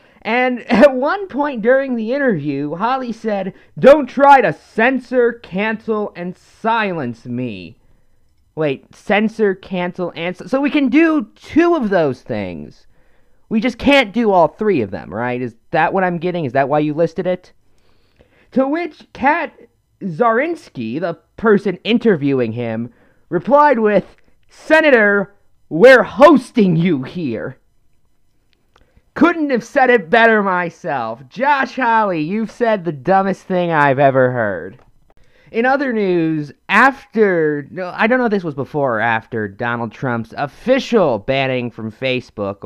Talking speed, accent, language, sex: 140 wpm, American, English, male